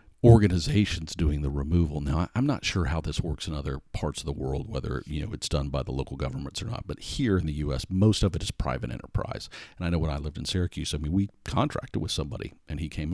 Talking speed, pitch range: 255 wpm, 75-95 Hz